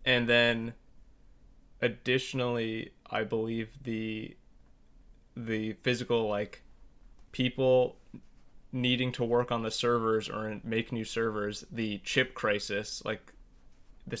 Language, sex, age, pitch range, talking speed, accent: English, male, 20-39, 110-120 Hz, 105 wpm, American